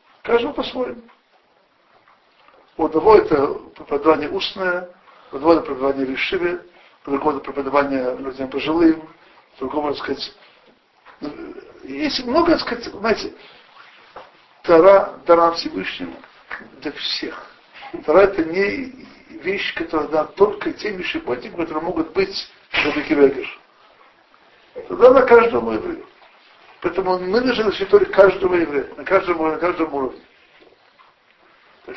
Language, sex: Russian, male